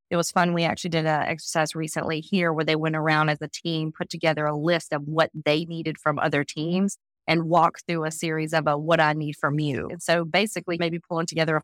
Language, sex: English, female